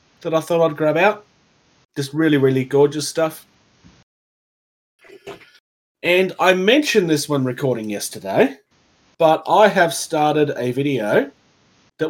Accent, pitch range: Australian, 125-165 Hz